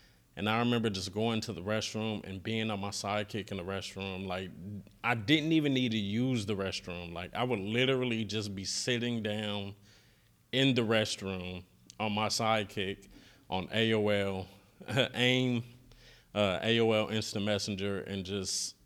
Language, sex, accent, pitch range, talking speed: English, male, American, 100-115 Hz, 155 wpm